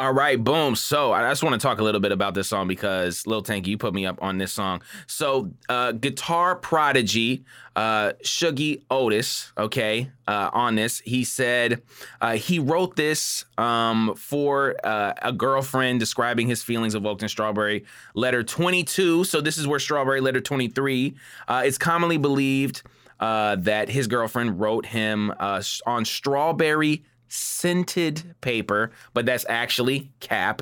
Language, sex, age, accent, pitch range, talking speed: English, male, 20-39, American, 105-140 Hz, 160 wpm